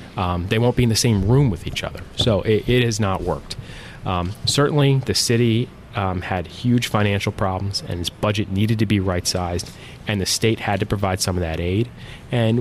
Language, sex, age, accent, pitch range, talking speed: English, male, 30-49, American, 95-115 Hz, 210 wpm